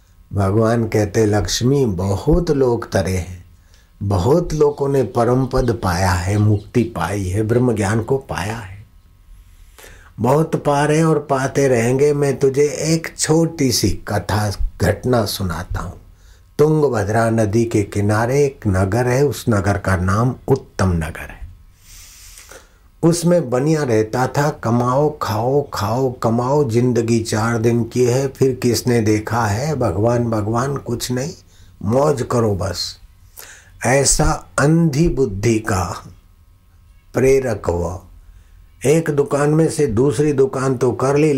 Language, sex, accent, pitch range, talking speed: Hindi, male, native, 95-130 Hz, 130 wpm